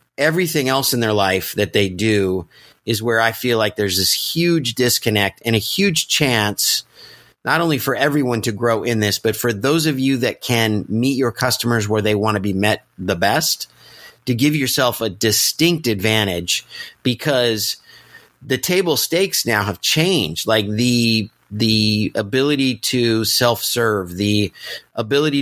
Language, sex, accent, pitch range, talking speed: English, male, American, 105-135 Hz, 160 wpm